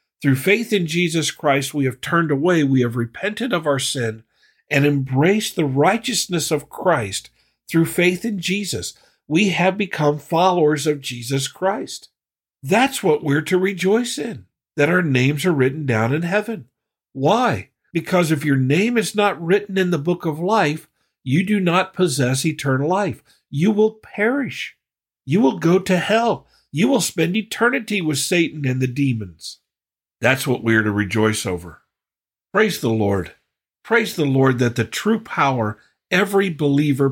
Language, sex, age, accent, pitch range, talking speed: English, male, 50-69, American, 130-185 Hz, 160 wpm